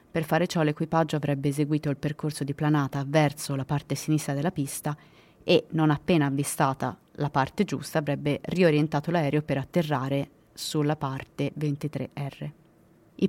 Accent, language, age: native, Italian, 30-49